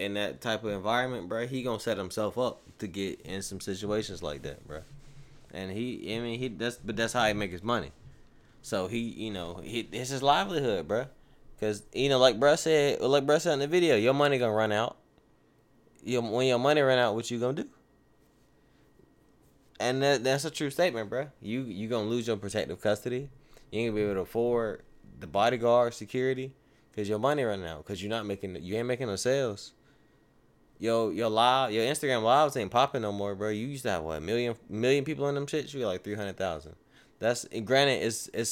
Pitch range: 105-130 Hz